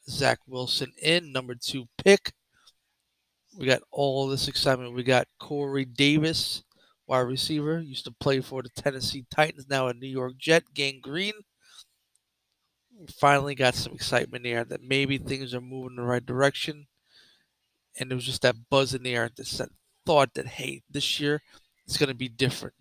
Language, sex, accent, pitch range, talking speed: English, male, American, 125-140 Hz, 175 wpm